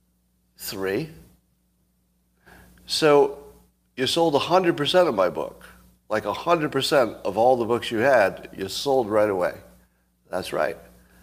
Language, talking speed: English, 120 wpm